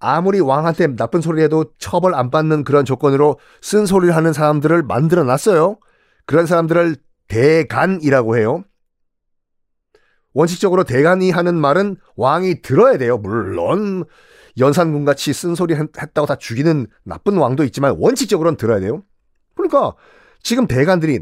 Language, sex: Korean, male